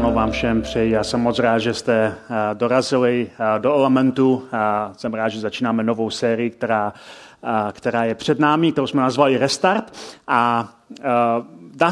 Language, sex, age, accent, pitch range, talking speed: Czech, male, 30-49, native, 130-165 Hz, 155 wpm